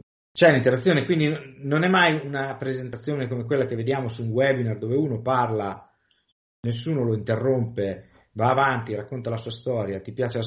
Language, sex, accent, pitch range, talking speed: Italian, male, native, 100-130 Hz, 170 wpm